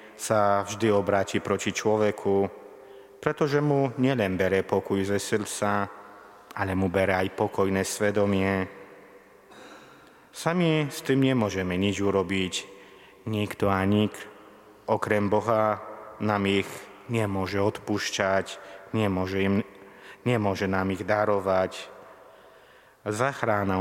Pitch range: 95-105 Hz